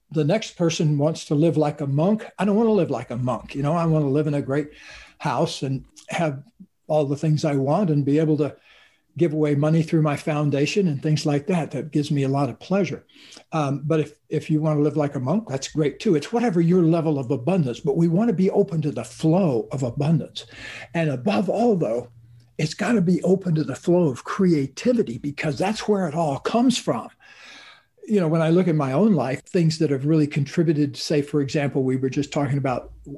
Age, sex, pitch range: 60-79, male, 145-170 Hz